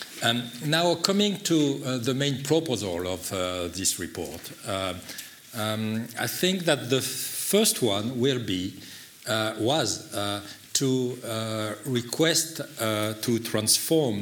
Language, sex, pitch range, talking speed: English, male, 100-130 Hz, 135 wpm